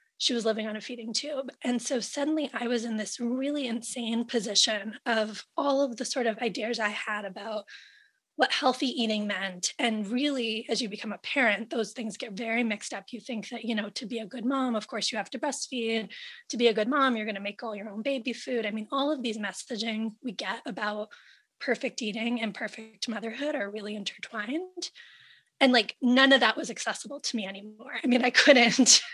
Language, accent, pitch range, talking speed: English, American, 220-260 Hz, 215 wpm